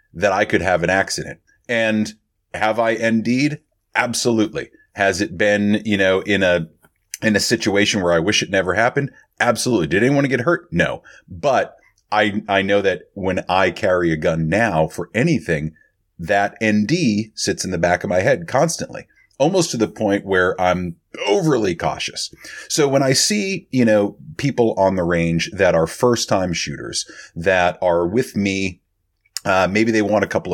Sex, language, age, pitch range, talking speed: male, English, 30-49, 90-115 Hz, 175 wpm